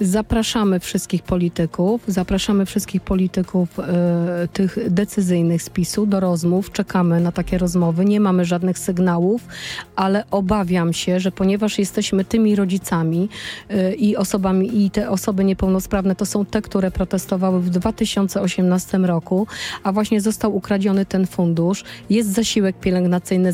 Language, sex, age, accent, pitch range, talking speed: Polish, female, 30-49, native, 190-215 Hz, 135 wpm